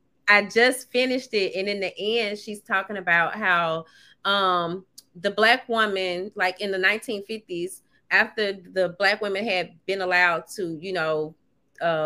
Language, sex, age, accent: English, female, 30-49, American